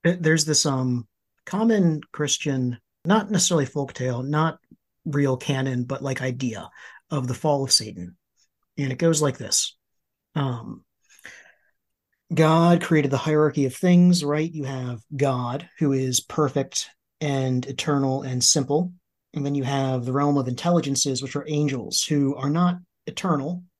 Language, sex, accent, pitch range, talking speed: English, male, American, 135-155 Hz, 145 wpm